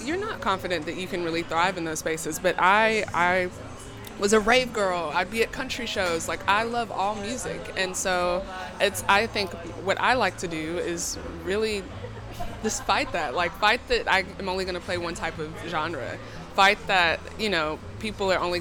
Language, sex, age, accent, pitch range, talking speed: English, female, 20-39, American, 155-215 Hz, 195 wpm